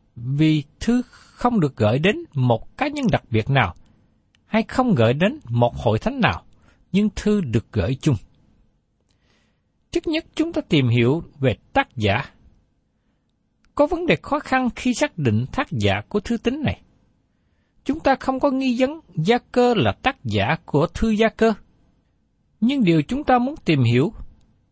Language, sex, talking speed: Vietnamese, male, 170 wpm